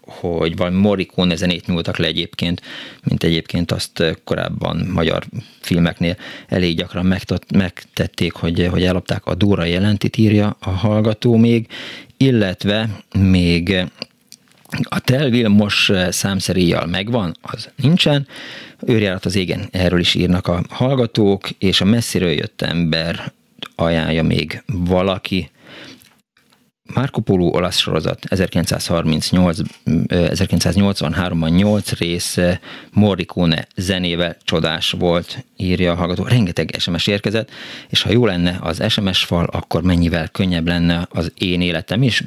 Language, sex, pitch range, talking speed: Hungarian, male, 85-110 Hz, 115 wpm